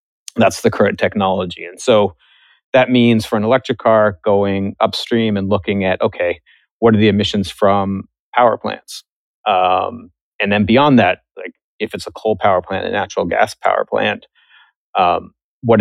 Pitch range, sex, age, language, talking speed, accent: 100-120 Hz, male, 40-59, English, 165 wpm, American